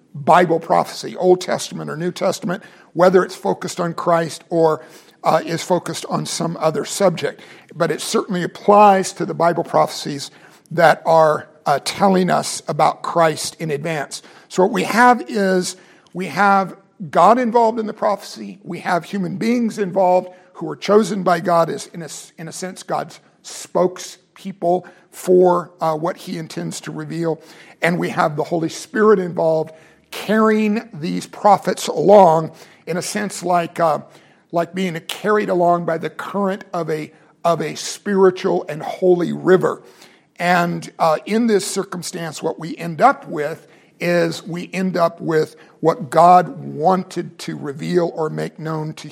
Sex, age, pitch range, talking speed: male, 50-69, 165-195 Hz, 160 wpm